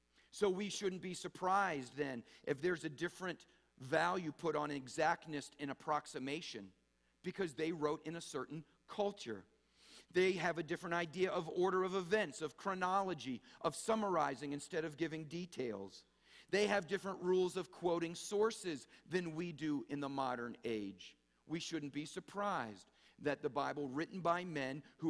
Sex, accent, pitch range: male, American, 145-185 Hz